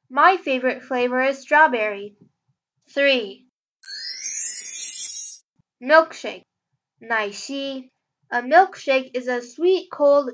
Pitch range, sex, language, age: 235-285 Hz, female, Chinese, 10-29